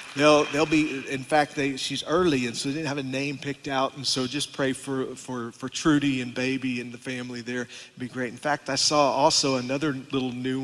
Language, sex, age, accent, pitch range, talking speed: English, male, 40-59, American, 130-145 Hz, 235 wpm